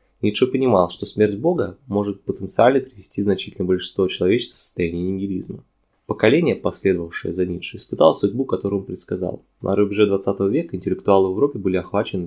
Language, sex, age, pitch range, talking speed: Russian, male, 20-39, 90-110 Hz, 155 wpm